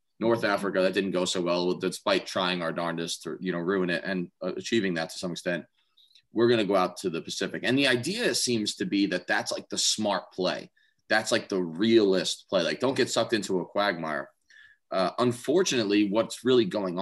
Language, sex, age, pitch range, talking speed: English, male, 30-49, 95-125 Hz, 210 wpm